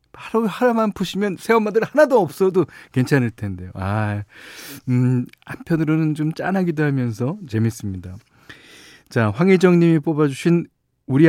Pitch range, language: 110-170 Hz, Korean